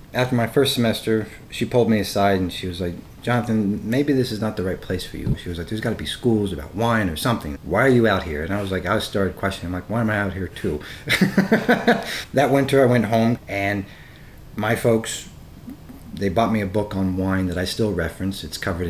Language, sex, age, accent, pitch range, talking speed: English, male, 40-59, American, 90-115 Hz, 240 wpm